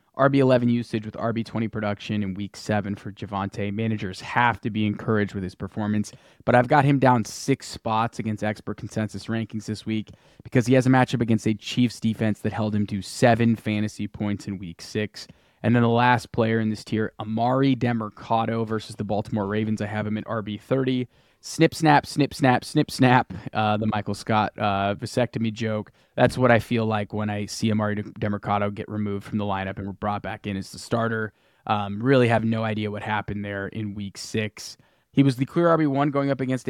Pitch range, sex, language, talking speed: 105-120 Hz, male, English, 205 wpm